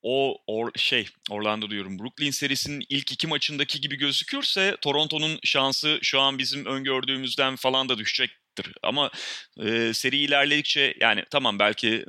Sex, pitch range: male, 110-135 Hz